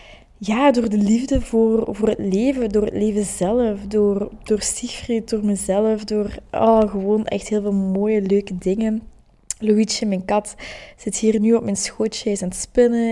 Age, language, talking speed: 20-39, Dutch, 185 wpm